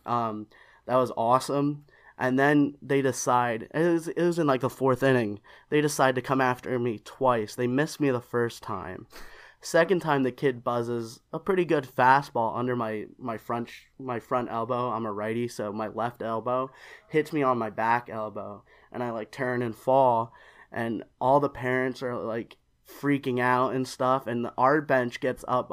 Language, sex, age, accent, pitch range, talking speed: English, male, 20-39, American, 115-135 Hz, 190 wpm